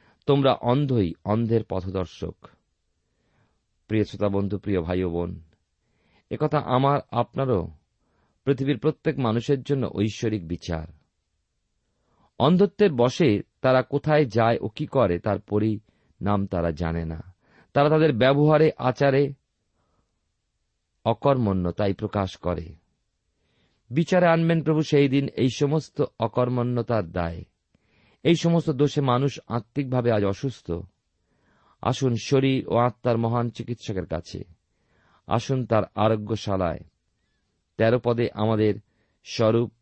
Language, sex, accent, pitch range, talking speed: Bengali, male, native, 100-135 Hz, 100 wpm